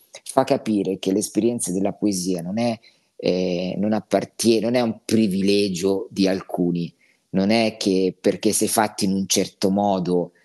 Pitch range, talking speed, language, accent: 95-110 Hz, 130 wpm, Italian, native